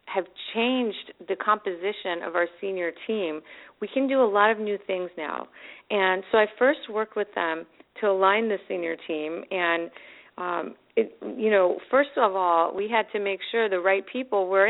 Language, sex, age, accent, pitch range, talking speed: English, female, 40-59, American, 180-215 Hz, 185 wpm